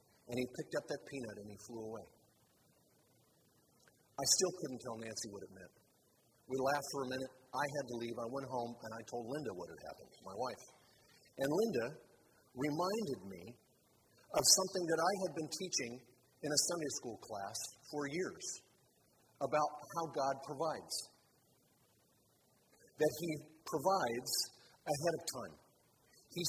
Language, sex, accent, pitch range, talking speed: English, male, American, 135-170 Hz, 155 wpm